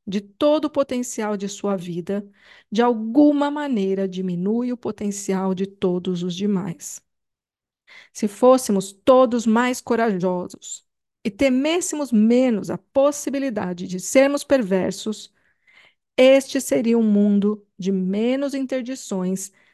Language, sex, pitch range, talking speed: Portuguese, female, 195-260 Hz, 110 wpm